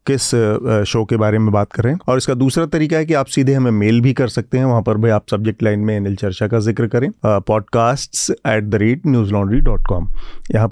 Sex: male